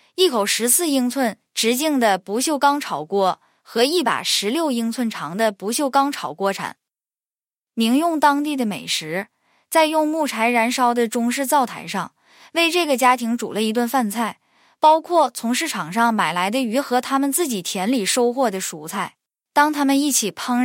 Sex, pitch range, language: female, 210-285 Hz, Chinese